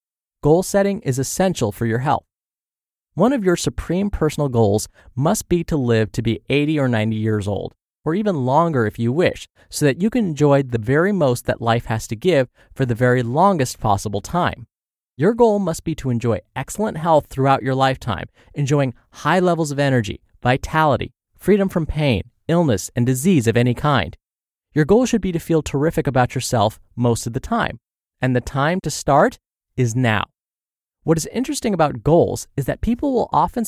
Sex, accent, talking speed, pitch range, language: male, American, 185 wpm, 120-175 Hz, English